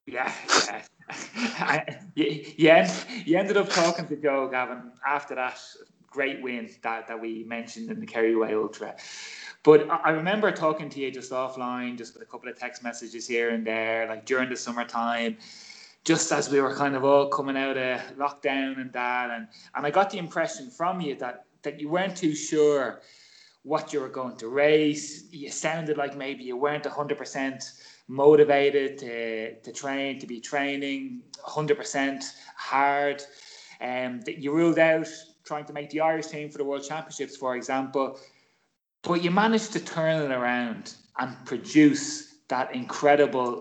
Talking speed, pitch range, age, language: 170 wpm, 125-160 Hz, 20-39, English